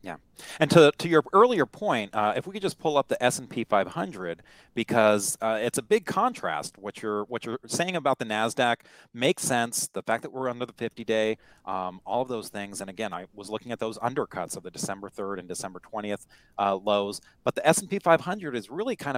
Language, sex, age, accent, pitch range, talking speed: English, male, 30-49, American, 105-140 Hz, 215 wpm